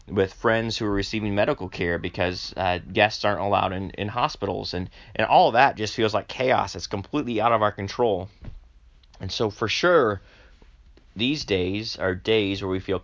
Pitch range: 95-115 Hz